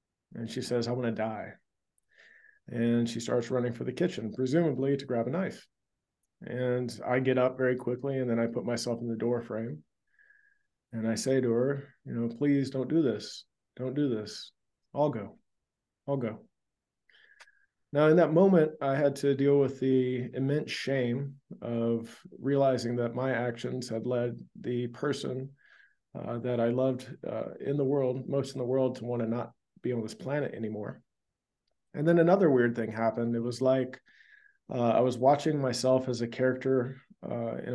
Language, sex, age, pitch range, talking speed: English, male, 40-59, 115-140 Hz, 180 wpm